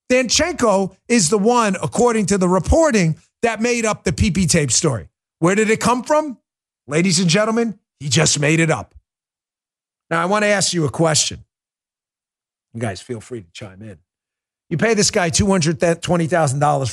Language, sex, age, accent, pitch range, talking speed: English, male, 40-59, American, 110-170 Hz, 170 wpm